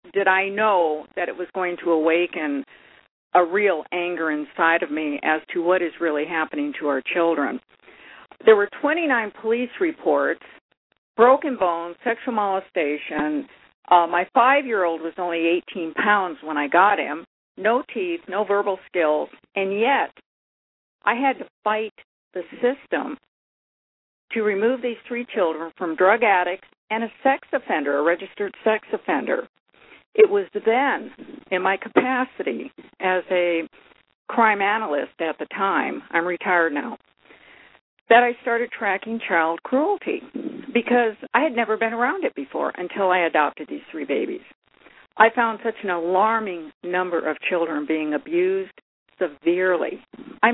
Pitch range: 170-240 Hz